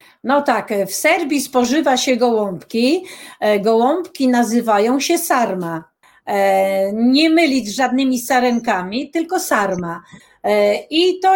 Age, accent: 40-59, native